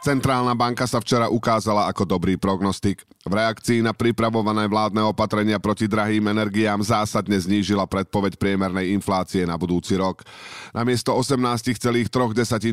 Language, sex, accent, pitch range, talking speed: Czech, male, native, 100-120 Hz, 130 wpm